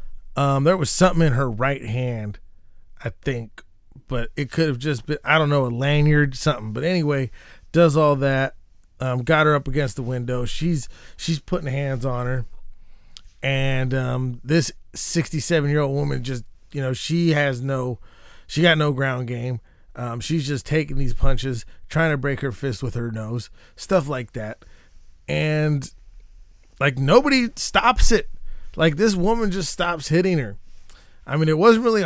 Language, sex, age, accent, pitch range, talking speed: English, male, 20-39, American, 120-170 Hz, 170 wpm